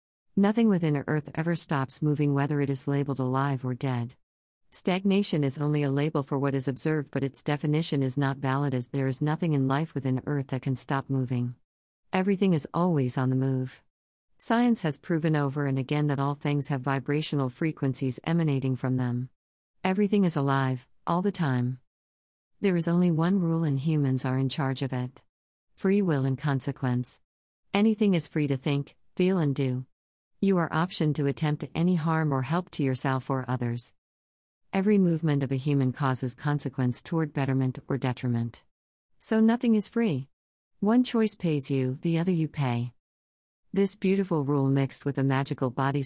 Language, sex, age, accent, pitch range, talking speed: English, female, 50-69, American, 130-160 Hz, 175 wpm